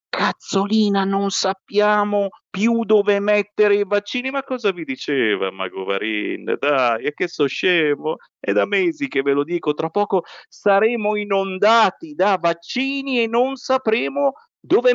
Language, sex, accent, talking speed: Italian, male, native, 140 wpm